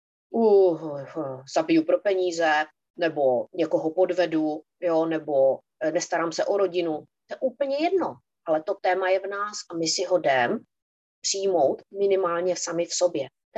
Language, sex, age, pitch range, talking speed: Czech, female, 30-49, 155-215 Hz, 165 wpm